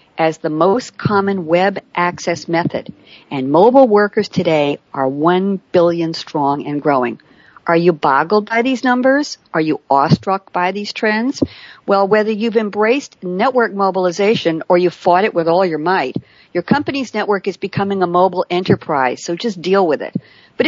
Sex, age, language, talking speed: female, 50-69, English, 165 wpm